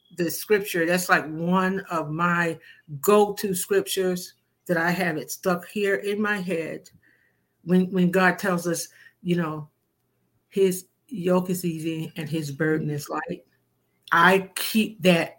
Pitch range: 165-195 Hz